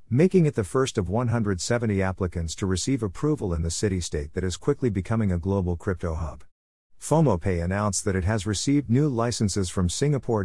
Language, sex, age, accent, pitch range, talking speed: English, male, 50-69, American, 90-115 Hz, 185 wpm